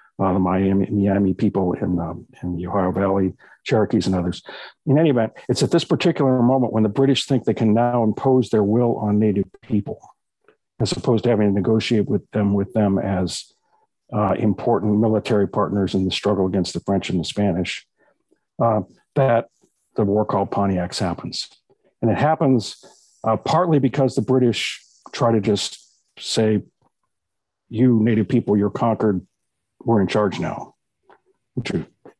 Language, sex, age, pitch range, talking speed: English, male, 50-69, 100-130 Hz, 165 wpm